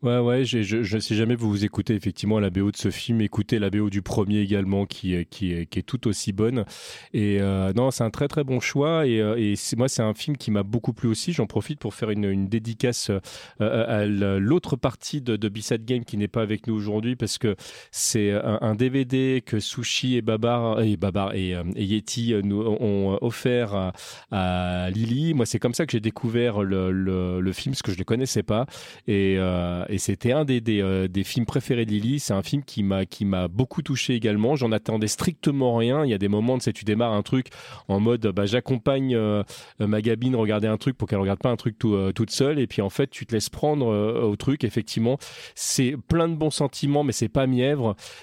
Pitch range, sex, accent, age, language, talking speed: 105-125 Hz, male, French, 30-49, French, 240 wpm